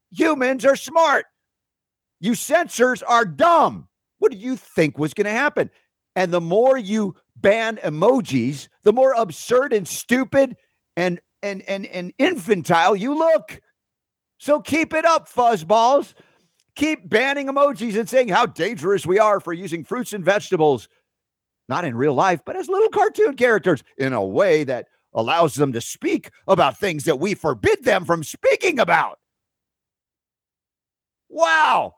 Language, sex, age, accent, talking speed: English, male, 50-69, American, 150 wpm